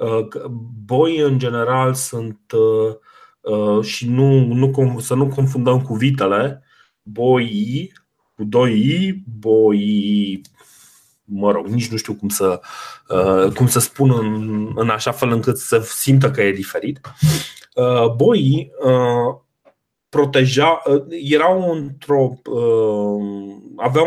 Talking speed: 115 wpm